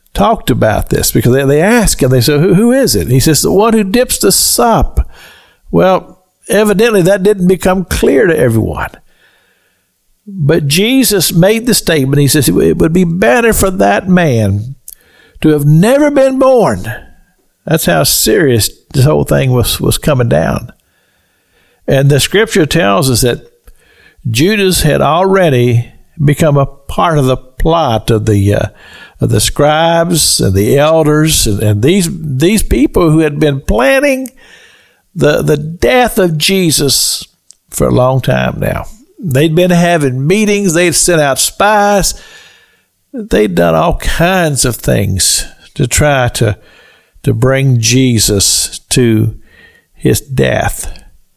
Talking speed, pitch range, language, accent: 145 wpm, 130-195 Hz, English, American